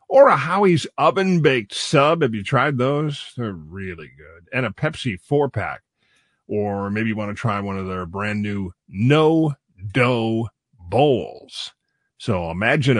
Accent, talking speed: American, 140 wpm